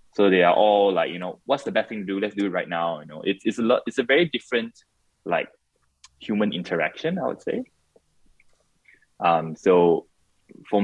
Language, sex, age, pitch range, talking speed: English, male, 20-39, 85-110 Hz, 205 wpm